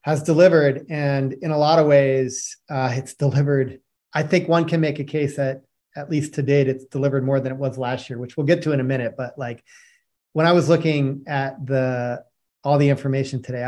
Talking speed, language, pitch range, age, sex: 220 wpm, English, 135-155 Hz, 30-49, male